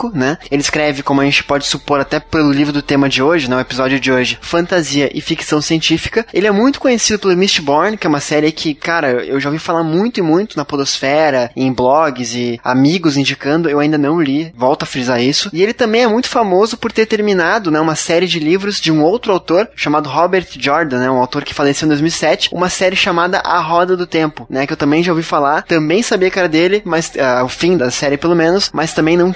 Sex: male